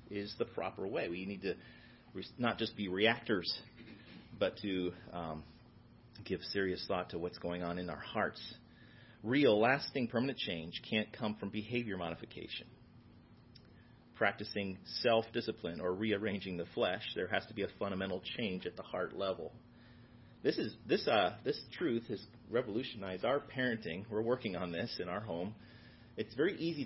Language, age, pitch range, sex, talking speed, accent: English, 40-59, 100-120 Hz, male, 155 wpm, American